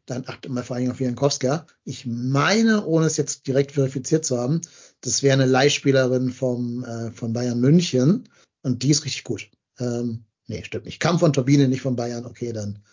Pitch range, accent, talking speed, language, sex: 120-140 Hz, German, 200 wpm, German, male